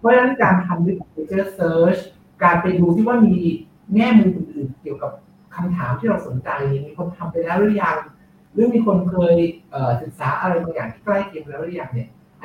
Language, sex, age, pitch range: Thai, male, 60-79, 140-195 Hz